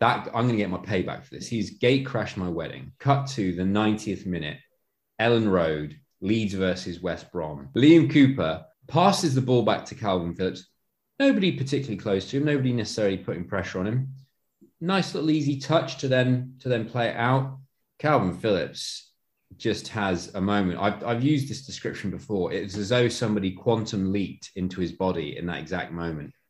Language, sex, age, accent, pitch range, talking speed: English, male, 20-39, British, 90-130 Hz, 180 wpm